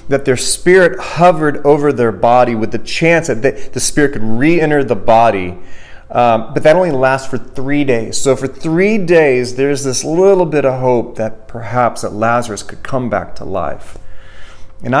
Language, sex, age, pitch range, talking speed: English, male, 30-49, 100-135 Hz, 185 wpm